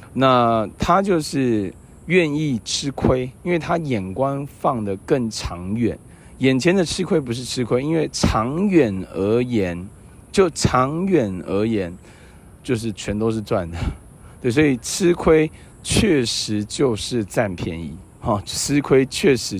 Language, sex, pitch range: Chinese, male, 100-130 Hz